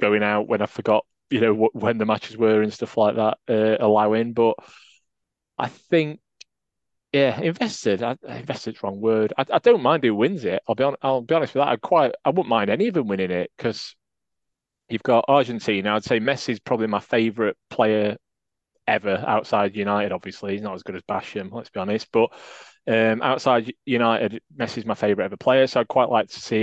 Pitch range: 105-125 Hz